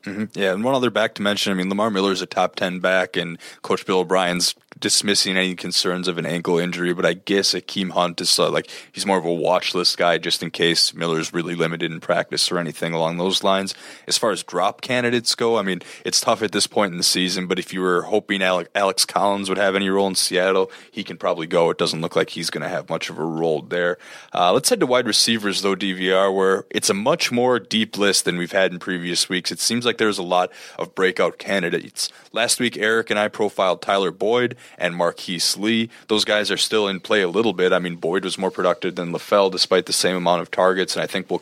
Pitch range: 90-105 Hz